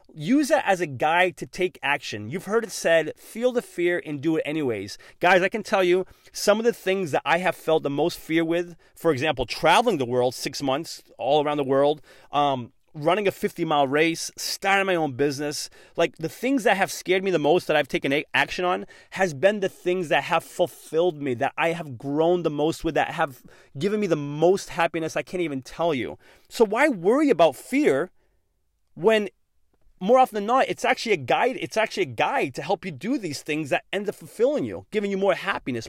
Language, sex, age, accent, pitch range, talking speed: English, male, 30-49, American, 150-200 Hz, 215 wpm